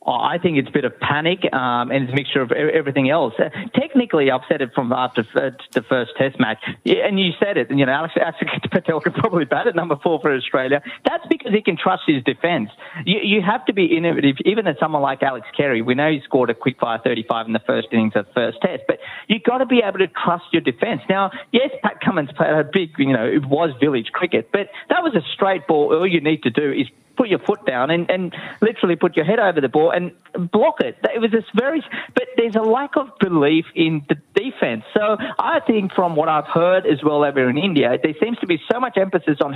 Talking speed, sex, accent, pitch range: 255 wpm, male, Australian, 145-215 Hz